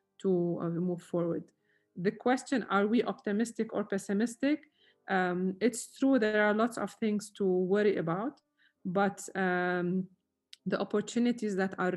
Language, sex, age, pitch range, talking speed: English, female, 20-39, 185-215 Hz, 140 wpm